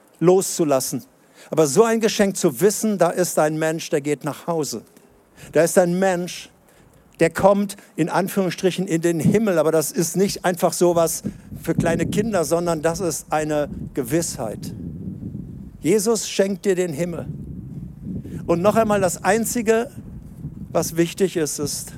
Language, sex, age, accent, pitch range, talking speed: German, male, 60-79, German, 155-195 Hz, 145 wpm